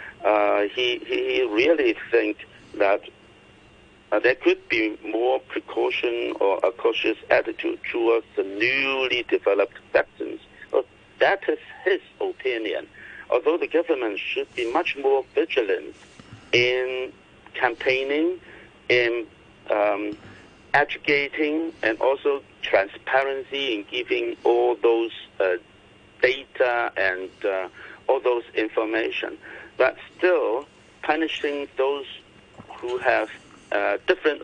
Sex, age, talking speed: male, 60-79, 110 wpm